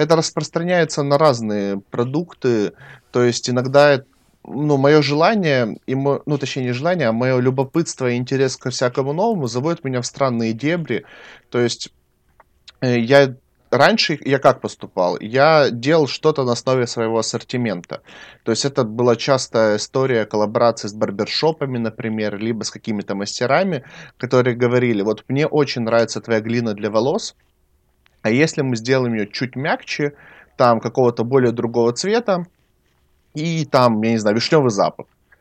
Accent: native